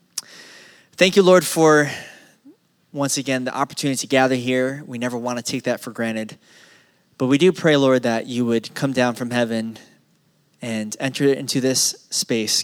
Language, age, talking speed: English, 20-39, 170 wpm